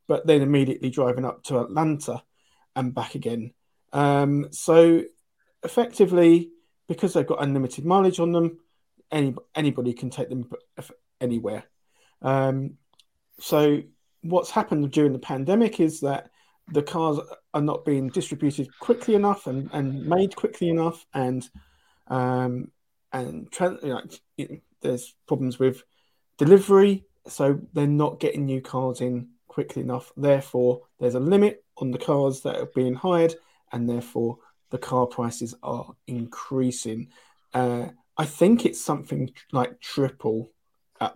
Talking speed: 130 wpm